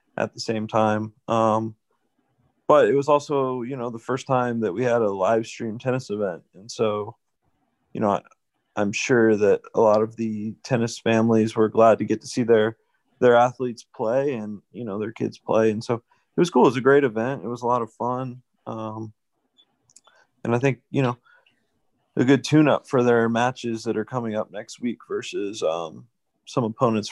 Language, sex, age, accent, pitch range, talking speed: English, male, 30-49, American, 110-125 Hz, 195 wpm